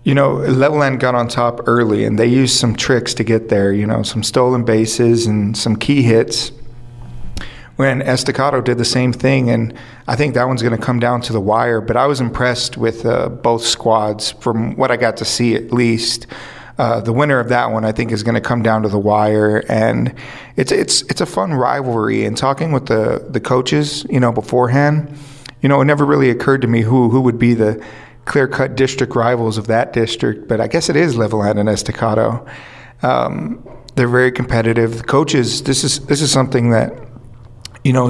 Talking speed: 205 wpm